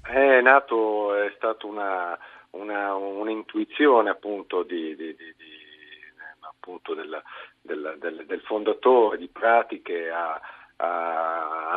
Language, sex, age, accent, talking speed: Italian, male, 50-69, native, 115 wpm